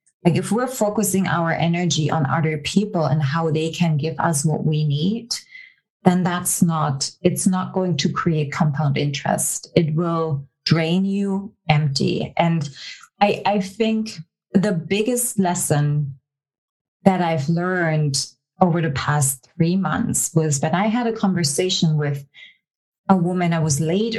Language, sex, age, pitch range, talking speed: English, female, 30-49, 150-185 Hz, 150 wpm